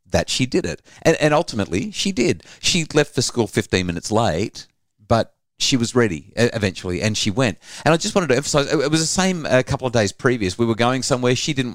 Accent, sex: Australian, male